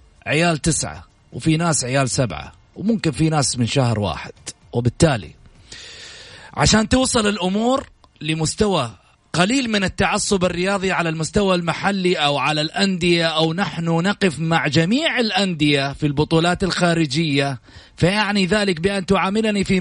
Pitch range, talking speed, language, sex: 125-190 Hz, 125 wpm, Arabic, male